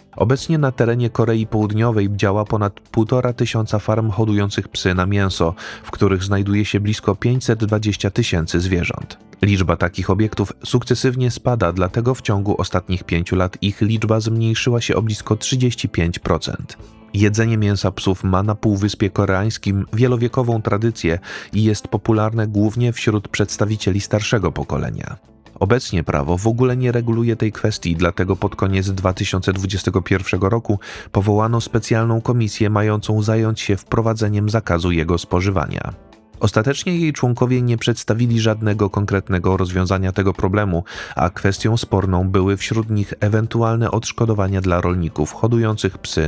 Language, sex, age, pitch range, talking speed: Polish, male, 30-49, 95-115 Hz, 130 wpm